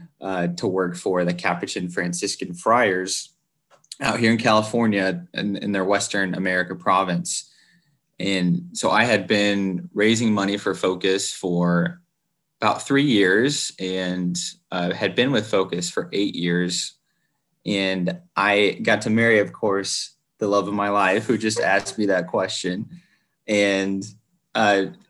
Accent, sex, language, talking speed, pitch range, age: American, male, English, 145 wpm, 95-115 Hz, 20-39